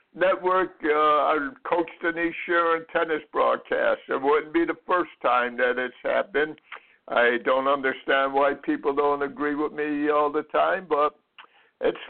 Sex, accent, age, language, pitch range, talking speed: male, American, 60-79, English, 150-180 Hz, 160 wpm